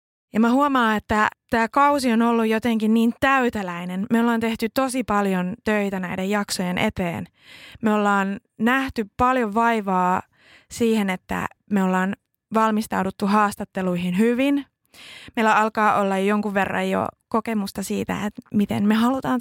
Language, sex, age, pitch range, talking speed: Finnish, female, 20-39, 195-250 Hz, 135 wpm